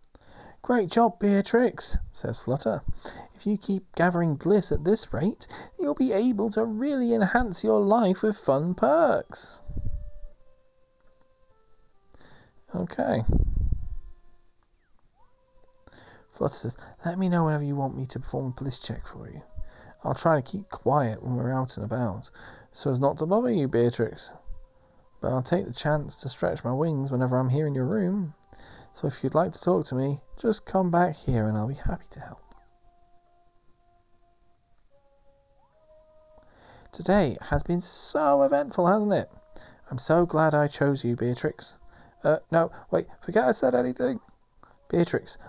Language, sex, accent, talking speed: English, male, British, 150 wpm